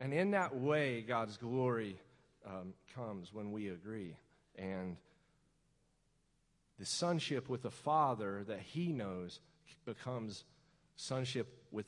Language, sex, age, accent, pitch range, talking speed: English, male, 40-59, American, 120-160 Hz, 115 wpm